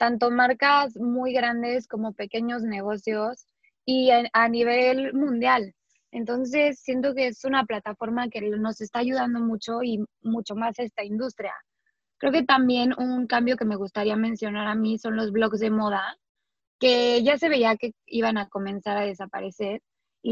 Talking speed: 160 wpm